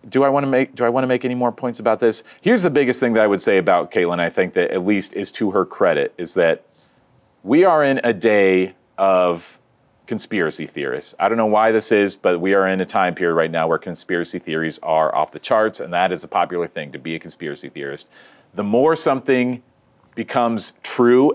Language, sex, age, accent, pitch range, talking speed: English, male, 40-59, American, 90-120 Hz, 215 wpm